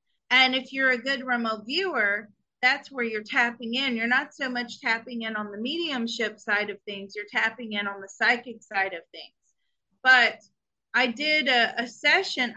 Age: 30-49